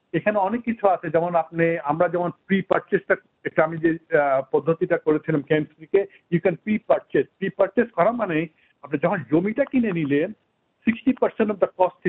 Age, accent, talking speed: 60-79, native, 145 wpm